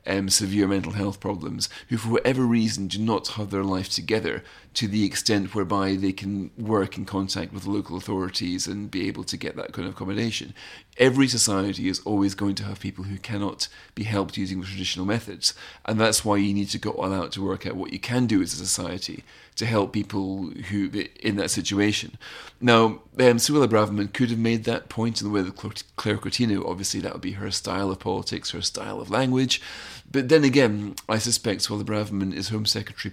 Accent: British